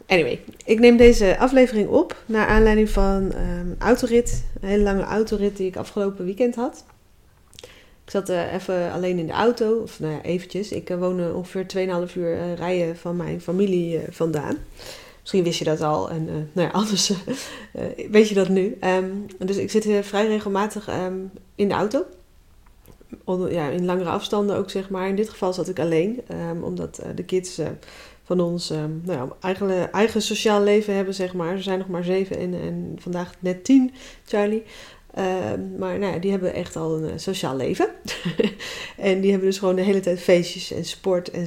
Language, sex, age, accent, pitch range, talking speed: Dutch, female, 30-49, Dutch, 175-205 Hz, 195 wpm